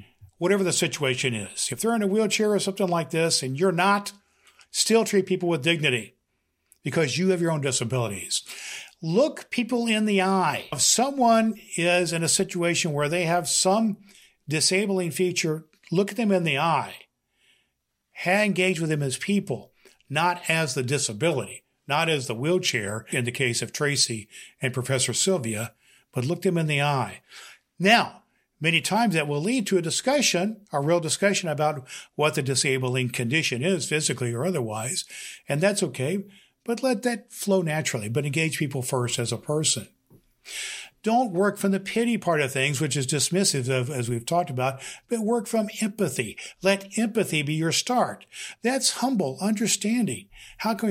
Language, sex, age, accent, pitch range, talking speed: English, male, 50-69, American, 140-200 Hz, 170 wpm